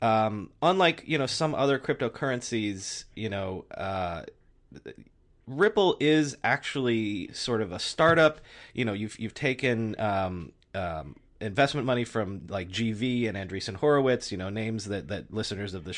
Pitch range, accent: 110-135 Hz, American